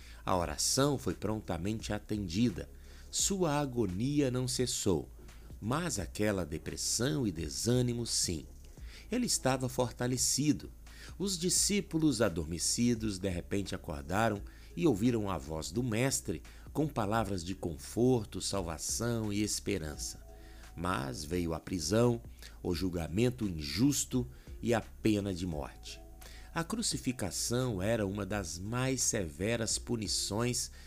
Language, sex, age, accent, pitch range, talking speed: Portuguese, male, 60-79, Brazilian, 80-125 Hz, 110 wpm